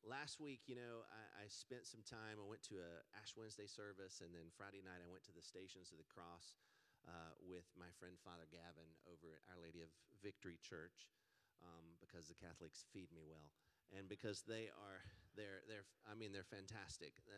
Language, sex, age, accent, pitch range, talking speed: English, male, 40-59, American, 85-110 Hz, 200 wpm